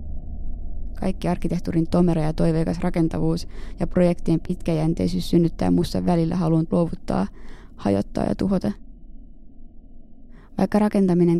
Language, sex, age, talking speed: Finnish, female, 20-39, 100 wpm